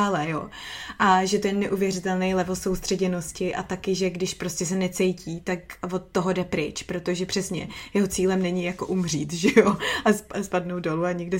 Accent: native